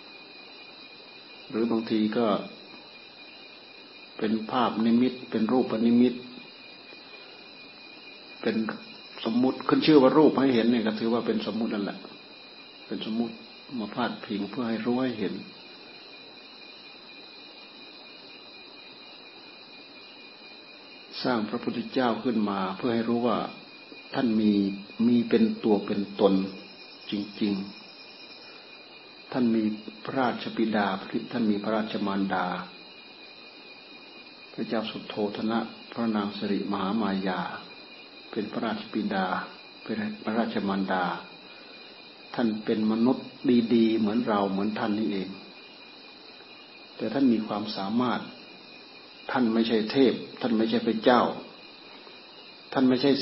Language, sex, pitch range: Thai, male, 105-120 Hz